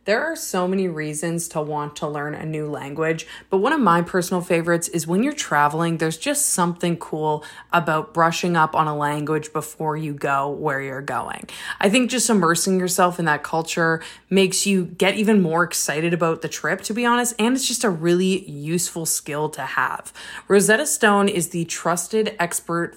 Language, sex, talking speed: English, female, 190 wpm